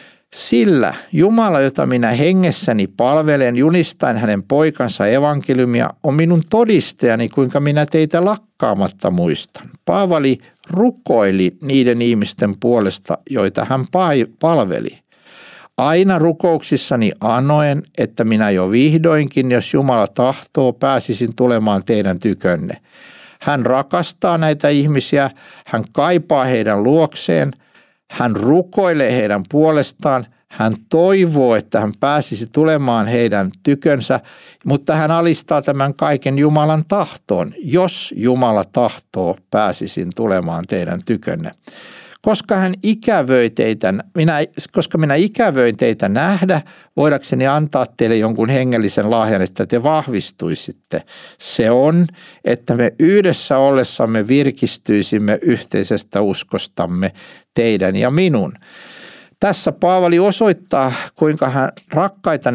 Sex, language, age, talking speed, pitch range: male, Finnish, 60-79, 105 wpm, 120-165 Hz